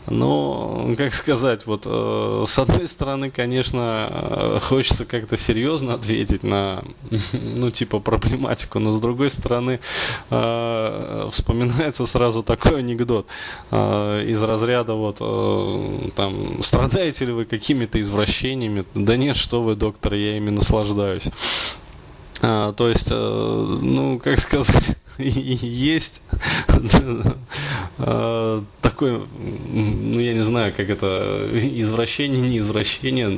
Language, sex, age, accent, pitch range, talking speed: Russian, male, 20-39, native, 110-130 Hz, 100 wpm